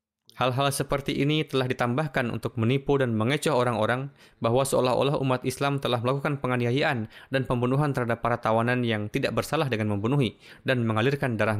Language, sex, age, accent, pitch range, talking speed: Indonesian, male, 20-39, native, 110-135 Hz, 155 wpm